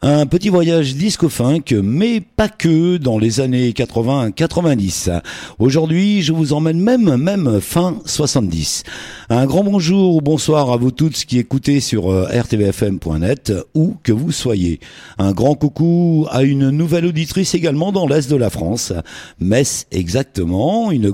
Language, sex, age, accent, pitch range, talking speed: French, male, 50-69, French, 115-165 Hz, 150 wpm